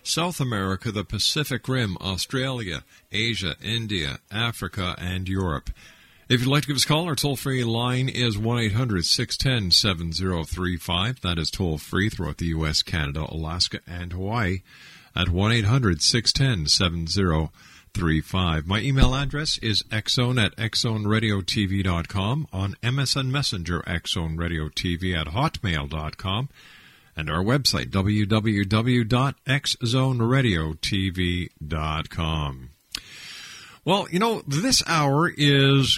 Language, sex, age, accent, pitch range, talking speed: English, male, 50-69, American, 90-125 Hz, 100 wpm